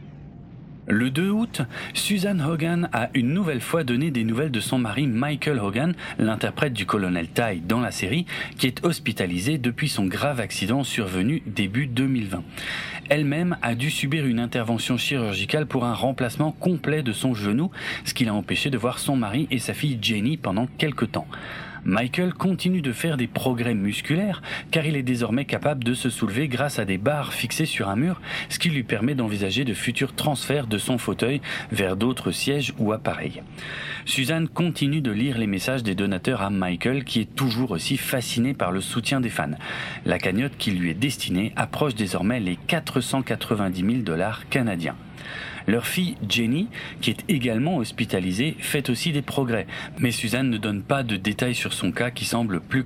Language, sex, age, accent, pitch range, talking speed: French, male, 40-59, French, 110-145 Hz, 180 wpm